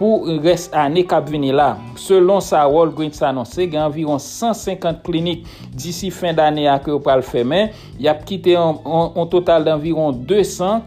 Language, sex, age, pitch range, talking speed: English, male, 60-79, 145-175 Hz, 155 wpm